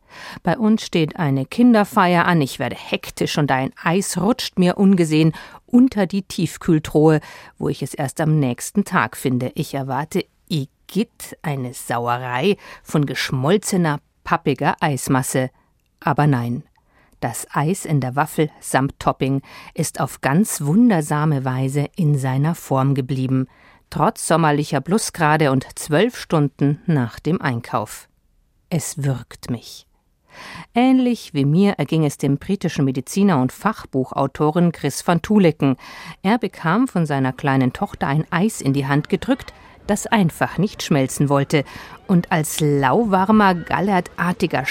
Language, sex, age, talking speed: German, female, 50-69, 135 wpm